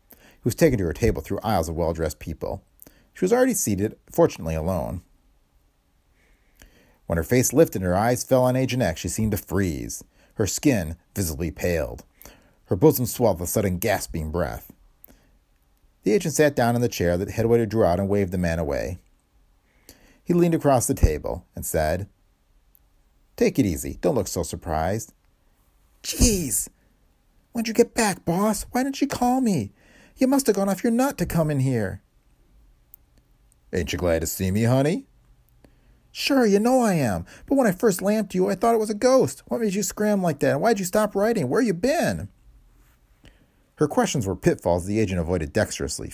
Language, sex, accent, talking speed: English, male, American, 185 wpm